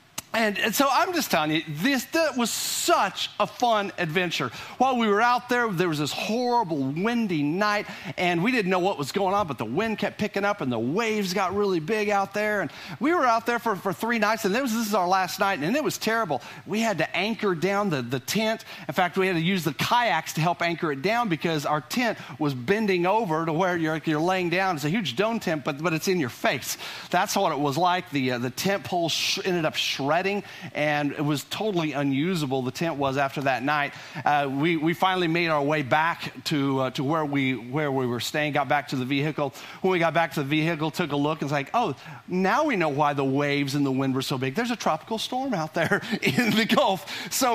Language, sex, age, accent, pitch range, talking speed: English, male, 40-59, American, 155-225 Hz, 240 wpm